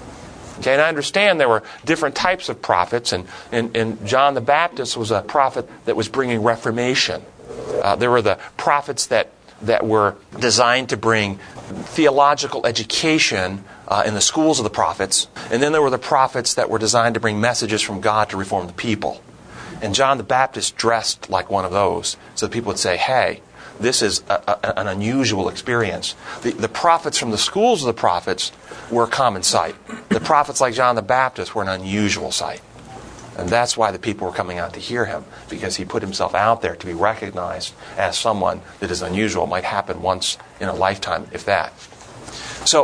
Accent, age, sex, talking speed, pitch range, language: American, 40-59, male, 195 wpm, 105-135 Hz, English